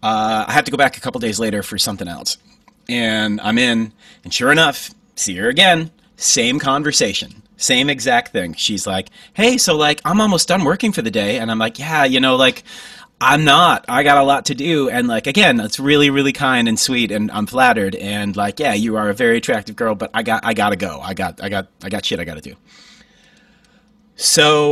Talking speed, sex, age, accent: 225 wpm, male, 30-49, American